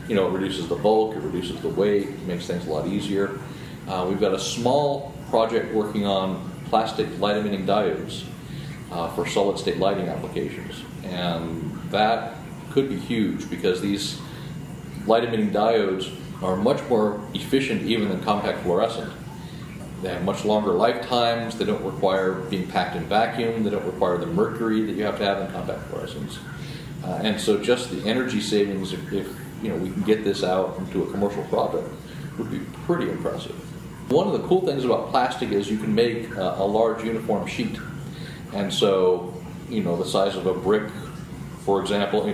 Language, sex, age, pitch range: English, male, 40-59, 100-115 Hz